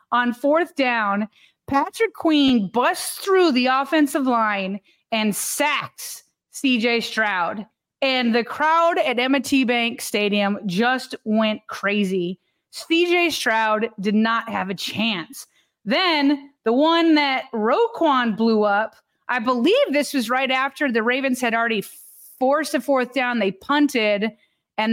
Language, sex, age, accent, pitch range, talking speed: English, female, 30-49, American, 225-300 Hz, 135 wpm